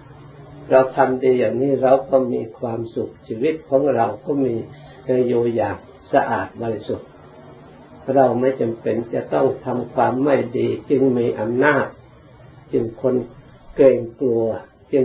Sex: male